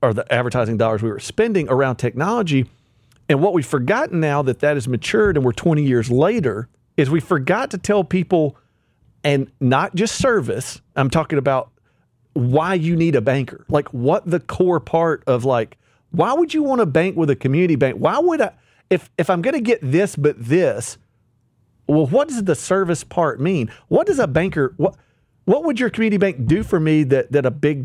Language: English